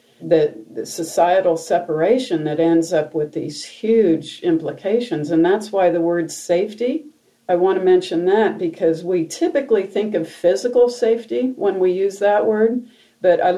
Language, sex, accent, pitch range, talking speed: English, female, American, 165-225 Hz, 160 wpm